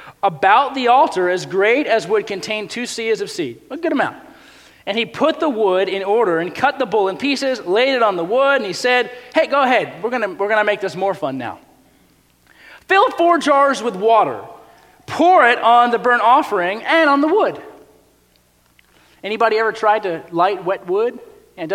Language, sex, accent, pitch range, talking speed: English, male, American, 180-275 Hz, 195 wpm